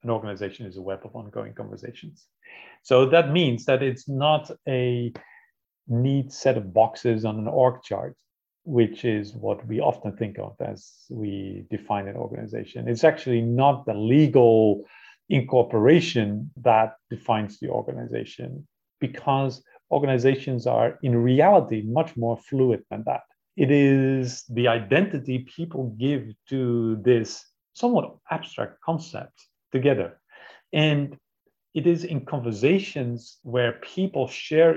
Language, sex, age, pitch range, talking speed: English, male, 40-59, 115-140 Hz, 130 wpm